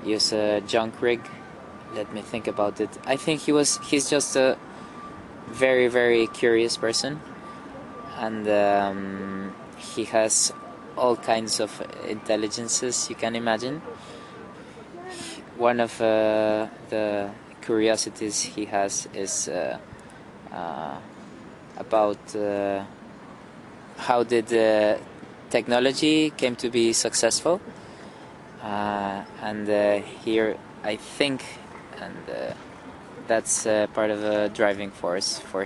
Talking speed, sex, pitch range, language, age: 115 wpm, male, 105-115 Hz, English, 20-39